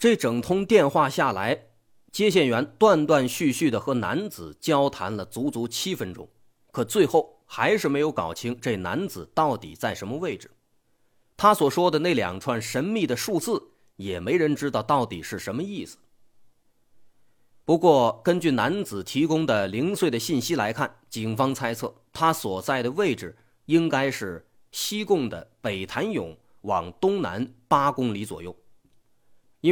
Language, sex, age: Chinese, male, 30-49